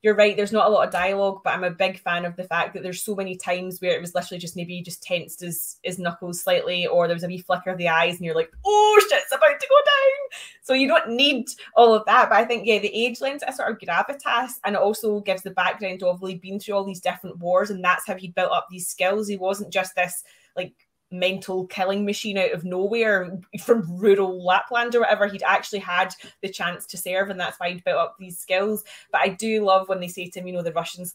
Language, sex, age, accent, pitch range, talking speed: English, female, 20-39, British, 180-220 Hz, 260 wpm